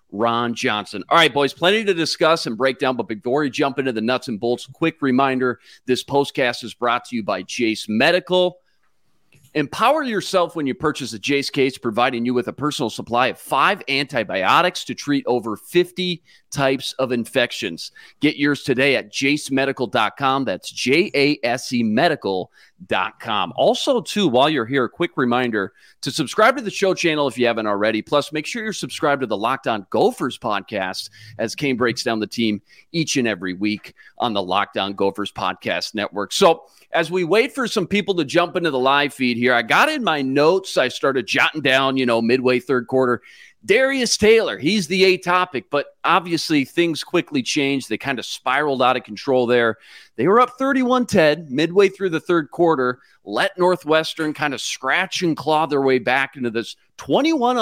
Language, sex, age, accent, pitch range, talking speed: English, male, 40-59, American, 125-175 Hz, 180 wpm